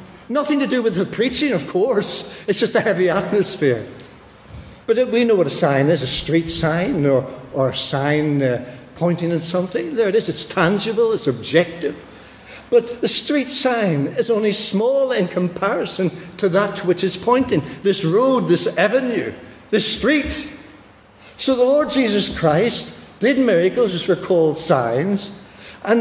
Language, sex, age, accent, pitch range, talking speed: English, male, 60-79, British, 155-235 Hz, 160 wpm